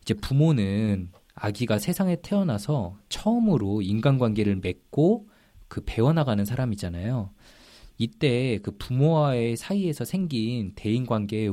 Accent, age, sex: native, 20-39, male